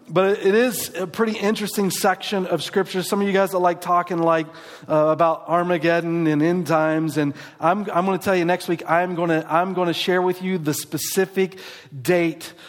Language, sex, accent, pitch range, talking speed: English, male, American, 155-185 Hz, 205 wpm